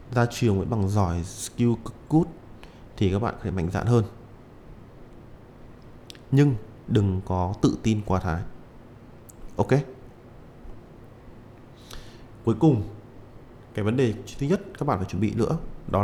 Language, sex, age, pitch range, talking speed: Vietnamese, male, 20-39, 100-120 Hz, 140 wpm